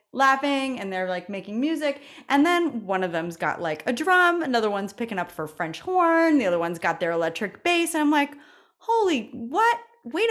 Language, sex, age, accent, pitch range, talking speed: English, female, 30-49, American, 155-255 Hz, 205 wpm